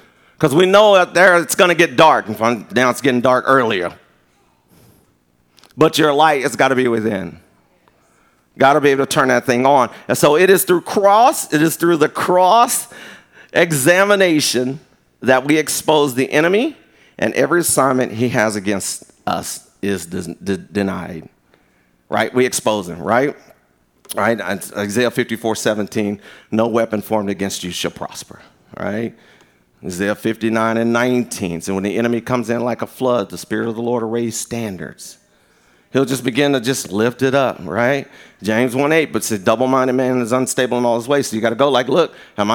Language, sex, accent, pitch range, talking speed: English, male, American, 105-145 Hz, 180 wpm